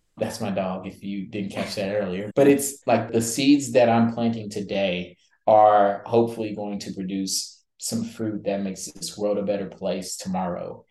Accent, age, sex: American, 20-39, male